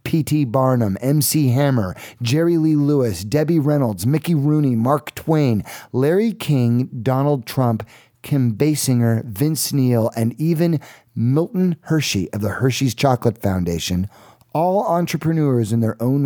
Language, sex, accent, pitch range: English, male, American, 105-135 Hz